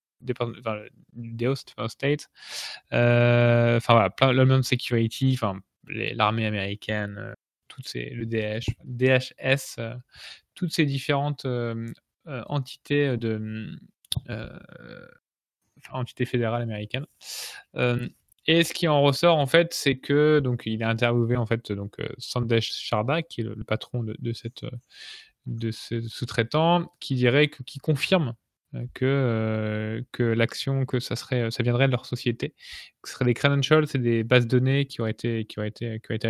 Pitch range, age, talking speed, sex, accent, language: 115-135 Hz, 20-39, 165 wpm, male, French, French